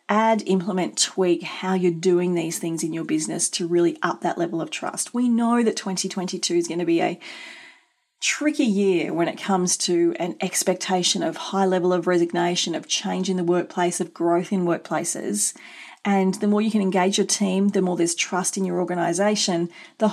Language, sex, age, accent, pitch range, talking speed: English, female, 30-49, Australian, 175-220 Hz, 195 wpm